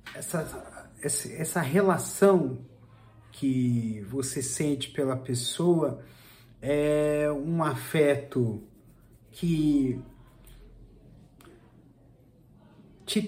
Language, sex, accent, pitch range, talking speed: Portuguese, male, Brazilian, 125-170 Hz, 60 wpm